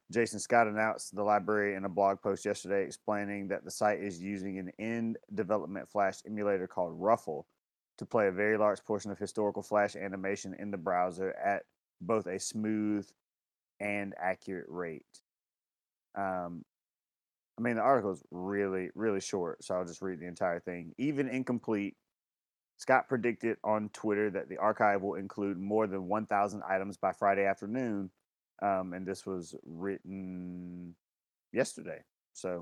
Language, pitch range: English, 95-105 Hz